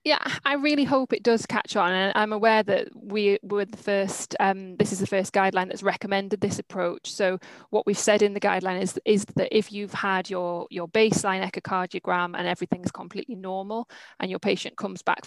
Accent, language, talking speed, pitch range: British, English, 205 wpm, 185-215 Hz